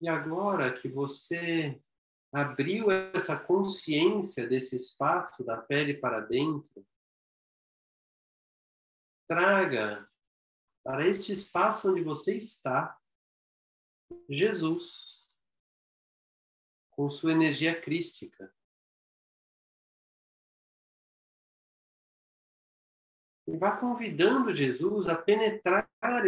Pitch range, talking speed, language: 130-190 Hz, 70 wpm, Portuguese